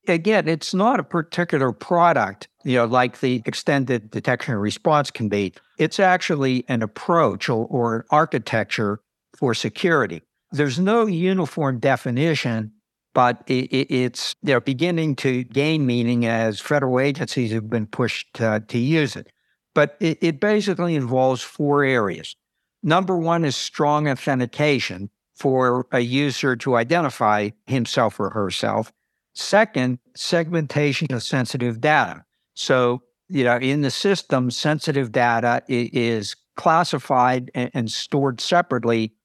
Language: English